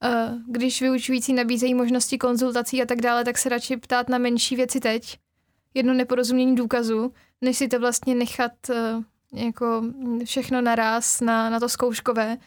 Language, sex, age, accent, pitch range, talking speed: Czech, female, 10-29, native, 230-250 Hz, 150 wpm